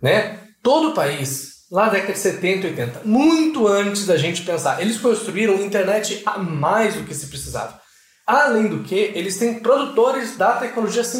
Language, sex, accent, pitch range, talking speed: Portuguese, male, Brazilian, 160-220 Hz, 170 wpm